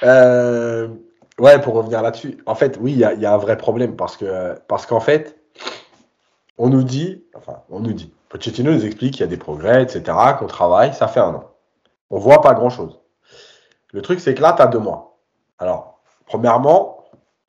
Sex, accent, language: male, French, French